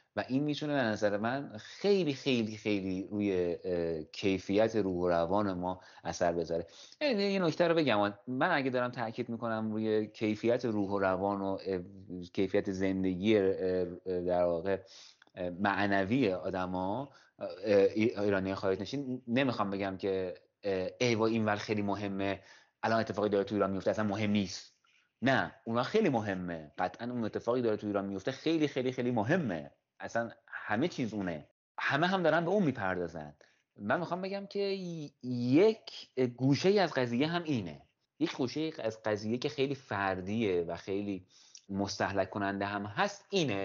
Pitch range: 95-125 Hz